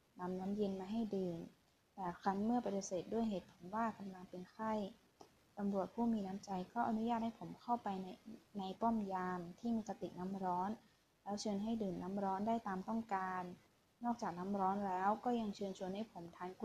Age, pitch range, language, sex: 20-39, 190-225 Hz, Thai, female